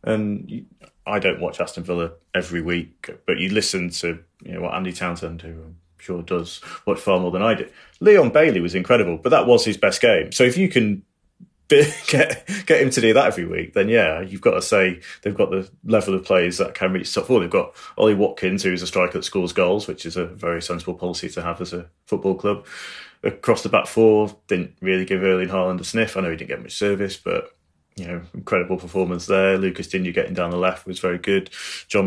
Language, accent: English, British